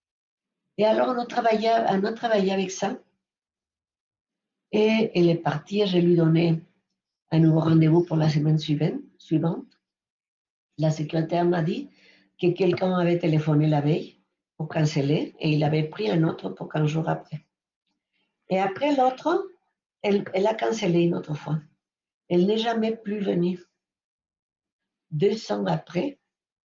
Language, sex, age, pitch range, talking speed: French, female, 60-79, 160-205 Hz, 145 wpm